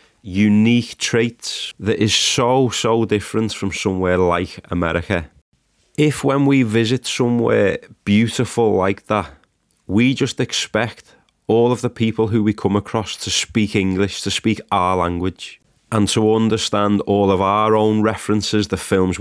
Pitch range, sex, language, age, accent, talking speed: 100-115 Hz, male, English, 30-49, British, 145 wpm